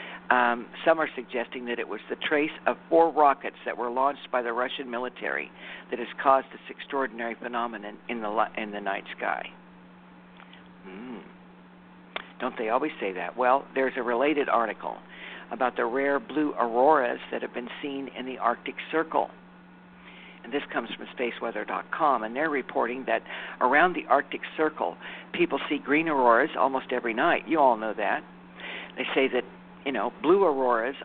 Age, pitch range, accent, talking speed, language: 60-79, 110-145 Hz, American, 165 wpm, English